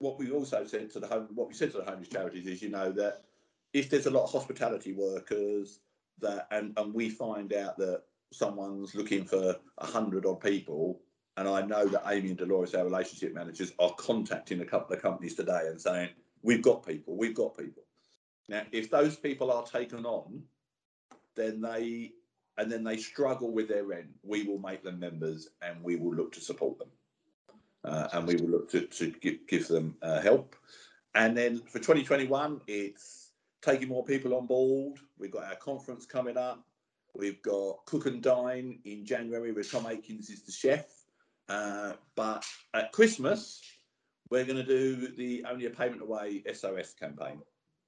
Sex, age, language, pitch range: male, 50-69, English, 100-125 Hz